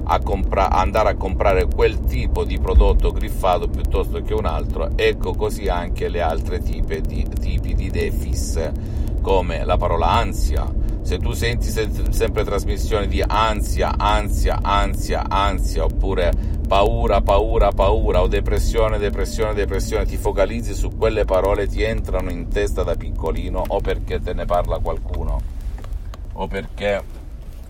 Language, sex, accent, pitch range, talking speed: Italian, male, native, 75-100 Hz, 140 wpm